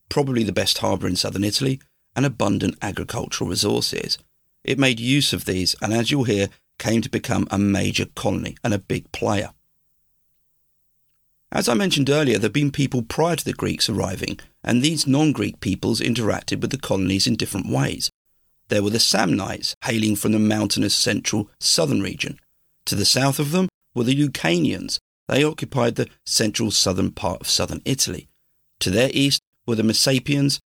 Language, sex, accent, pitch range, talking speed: English, male, British, 100-135 Hz, 170 wpm